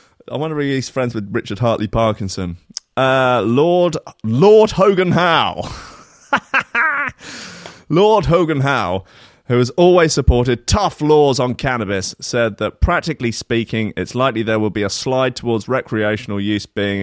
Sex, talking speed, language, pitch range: male, 140 wpm, English, 105-140 Hz